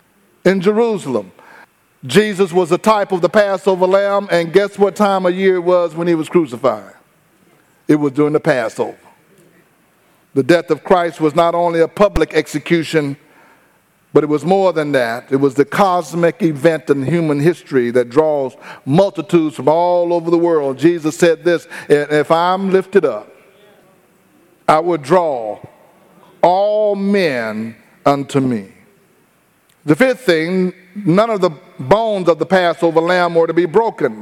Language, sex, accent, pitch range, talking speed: English, male, American, 150-185 Hz, 155 wpm